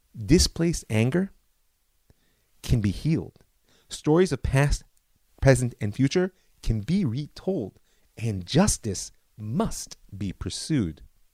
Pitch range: 105-160 Hz